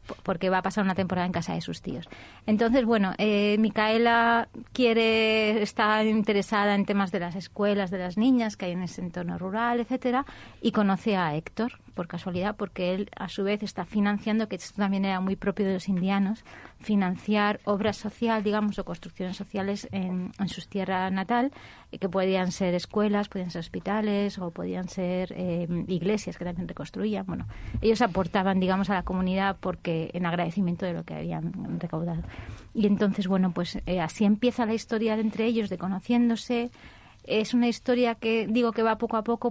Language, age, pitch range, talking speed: Spanish, 30-49, 185-225 Hz, 185 wpm